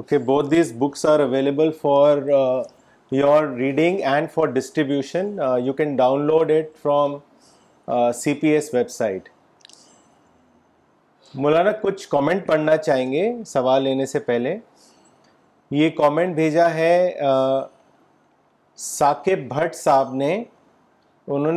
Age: 30-49